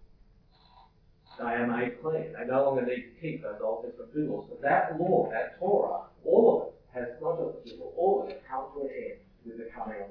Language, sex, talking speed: English, male, 225 wpm